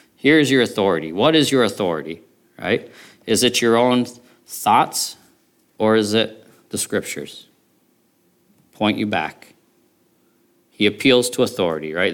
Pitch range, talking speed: 90-120 Hz, 135 wpm